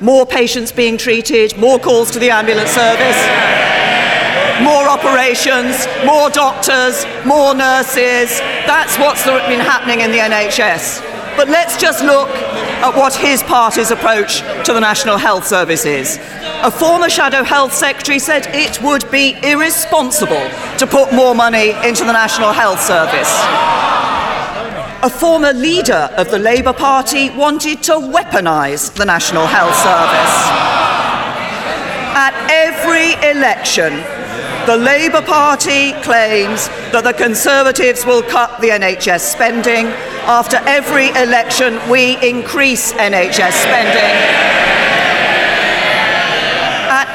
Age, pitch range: 40-59, 235-280 Hz